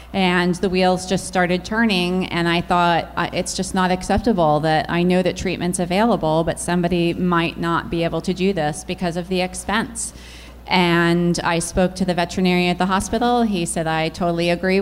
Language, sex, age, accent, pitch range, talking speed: English, female, 30-49, American, 170-190 Hz, 185 wpm